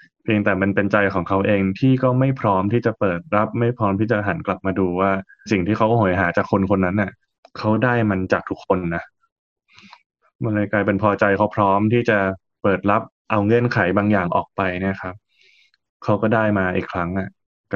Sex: male